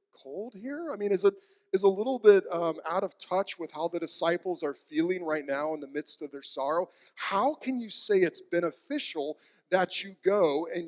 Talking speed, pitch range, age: 210 wpm, 155-225 Hz, 40-59